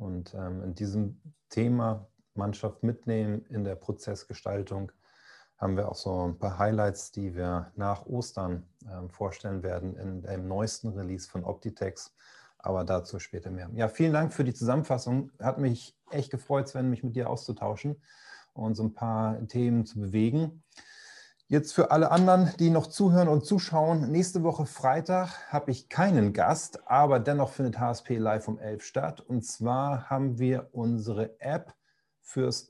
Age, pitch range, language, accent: 30-49, 105-135 Hz, German, German